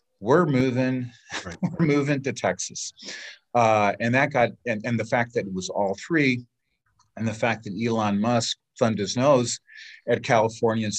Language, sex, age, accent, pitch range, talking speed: English, male, 40-59, American, 100-125 Hz, 170 wpm